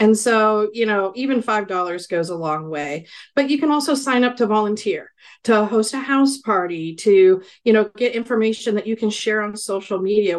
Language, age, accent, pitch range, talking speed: English, 40-59, American, 185-240 Hz, 200 wpm